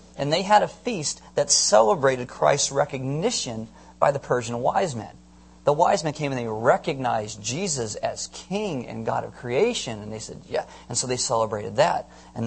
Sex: male